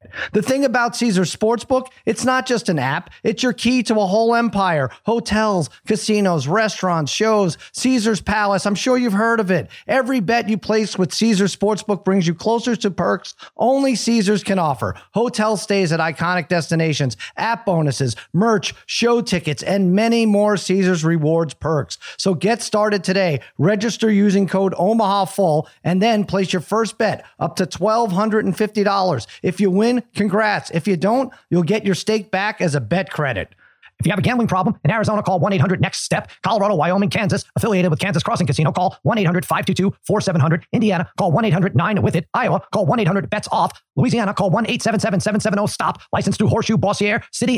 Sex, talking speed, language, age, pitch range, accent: male, 180 wpm, English, 40-59, 175-220 Hz, American